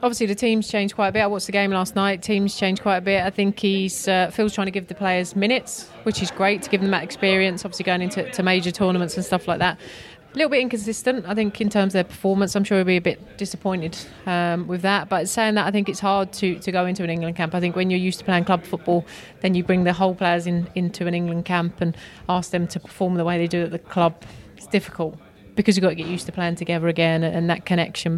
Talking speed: 275 wpm